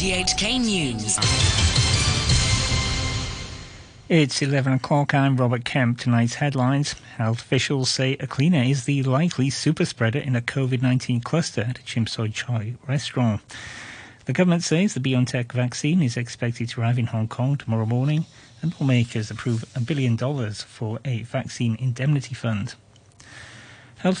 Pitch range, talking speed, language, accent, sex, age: 115-140 Hz, 135 wpm, English, British, male, 40-59